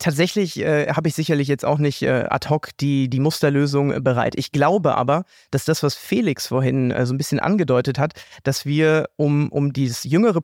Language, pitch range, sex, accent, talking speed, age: German, 140-175 Hz, male, German, 200 wpm, 30-49